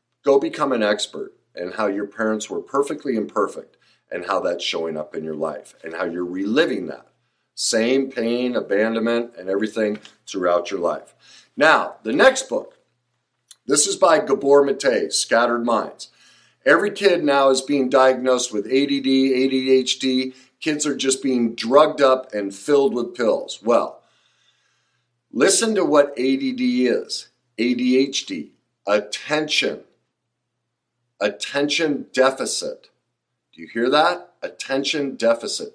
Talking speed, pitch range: 130 wpm, 120-160 Hz